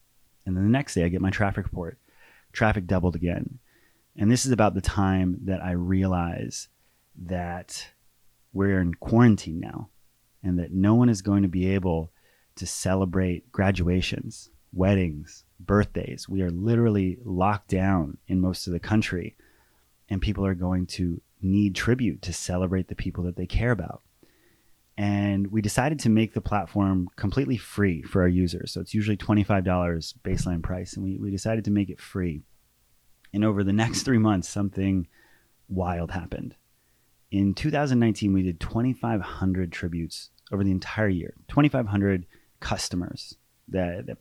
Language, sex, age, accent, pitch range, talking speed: English, male, 30-49, American, 90-105 Hz, 155 wpm